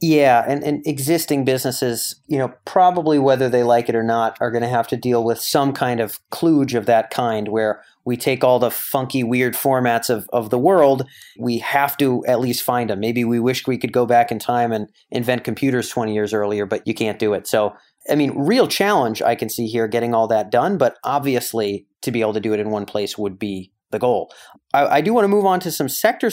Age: 30-49